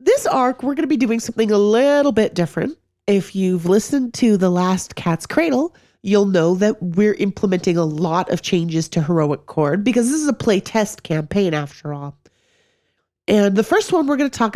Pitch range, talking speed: 170-230 Hz, 200 wpm